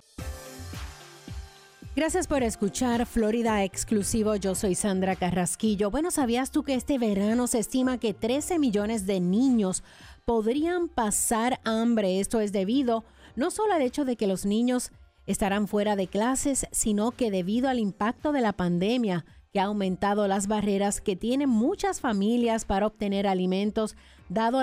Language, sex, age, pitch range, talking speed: English, female, 40-59, 200-255 Hz, 150 wpm